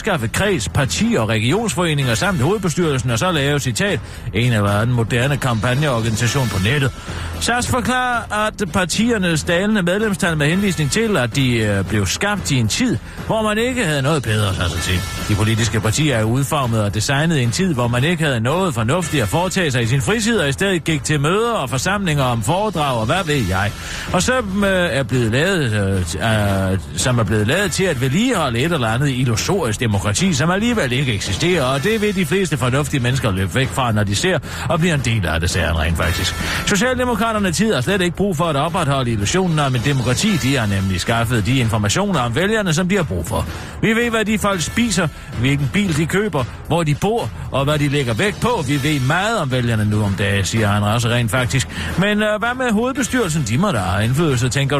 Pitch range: 115-185 Hz